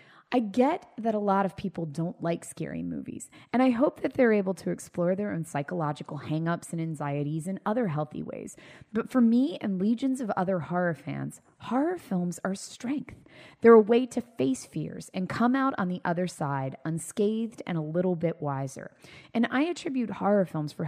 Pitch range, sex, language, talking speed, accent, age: 160-235 Hz, female, English, 195 wpm, American, 20-39